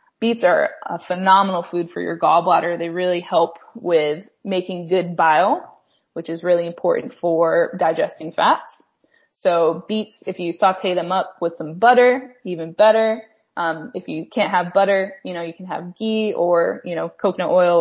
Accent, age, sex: American, 20-39, female